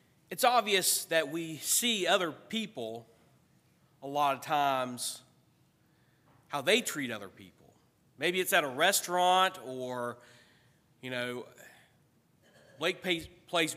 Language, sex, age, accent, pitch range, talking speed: English, male, 40-59, American, 135-175 Hz, 115 wpm